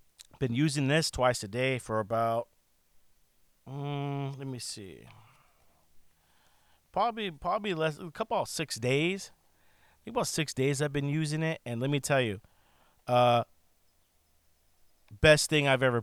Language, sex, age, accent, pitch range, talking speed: English, male, 40-59, American, 95-135 Hz, 145 wpm